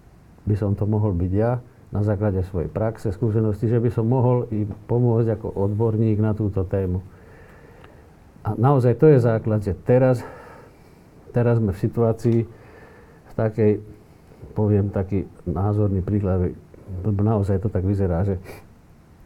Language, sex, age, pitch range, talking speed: Slovak, male, 50-69, 90-115 Hz, 140 wpm